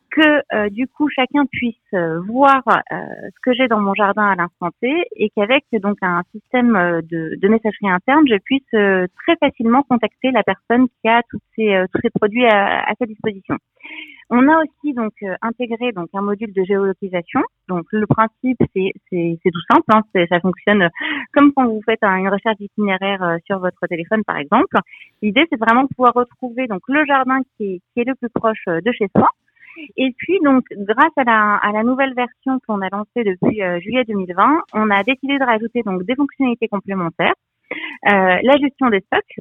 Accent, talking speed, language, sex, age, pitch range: French, 200 wpm, French, female, 30-49, 195-255 Hz